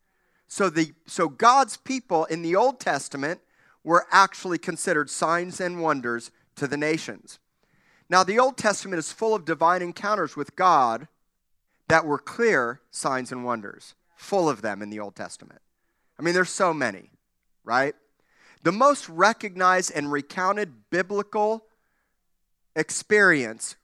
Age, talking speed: 40-59, 140 wpm